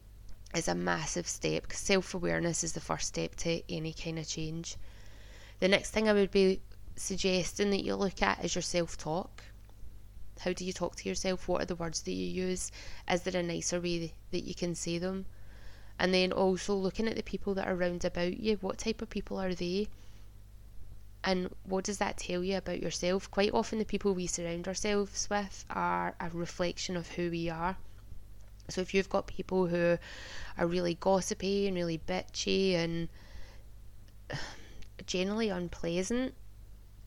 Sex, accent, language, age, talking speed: female, British, English, 20-39, 175 wpm